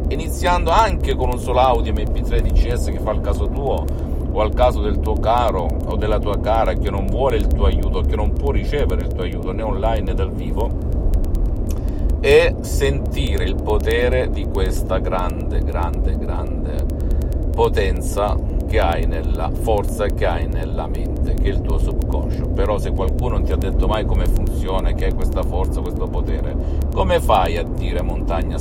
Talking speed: 180 wpm